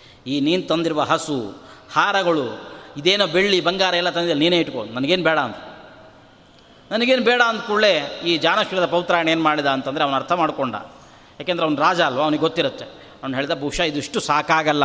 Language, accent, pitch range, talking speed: Kannada, native, 145-195 Hz, 160 wpm